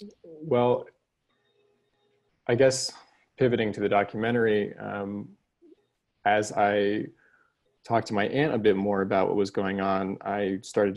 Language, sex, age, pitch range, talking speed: English, male, 20-39, 95-115 Hz, 130 wpm